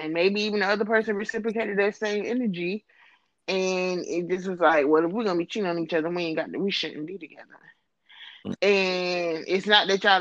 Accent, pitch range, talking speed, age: American, 180-220 Hz, 210 wpm, 20-39